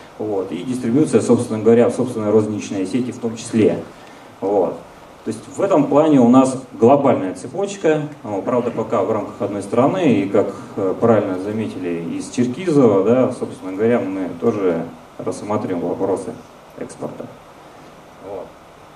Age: 30-49